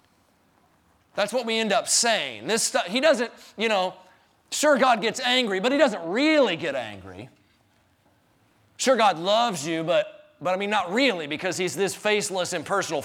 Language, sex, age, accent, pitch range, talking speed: English, male, 40-59, American, 150-200 Hz, 170 wpm